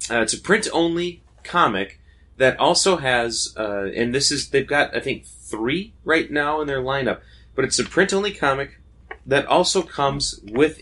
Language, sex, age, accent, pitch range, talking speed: English, male, 30-49, American, 95-130 Hz, 170 wpm